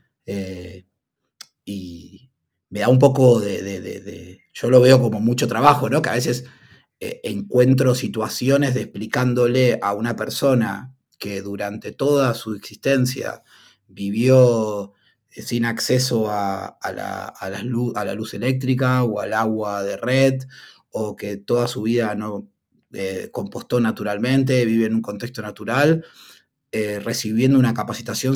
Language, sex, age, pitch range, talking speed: Spanish, male, 30-49, 105-130 Hz, 145 wpm